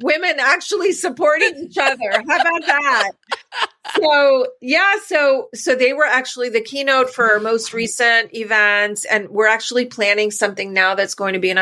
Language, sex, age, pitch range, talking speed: English, female, 30-49, 200-235 Hz, 170 wpm